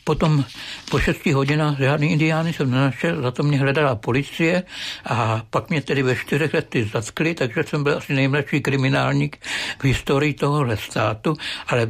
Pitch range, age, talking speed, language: 120-145 Hz, 60-79, 160 wpm, Czech